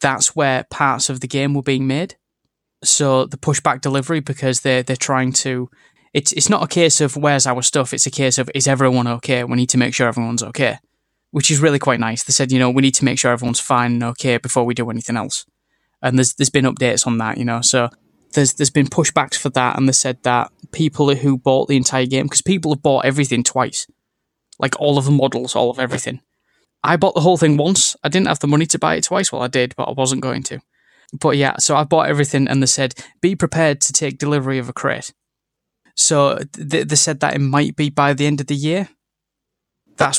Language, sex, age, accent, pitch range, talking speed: English, male, 10-29, British, 130-150 Hz, 235 wpm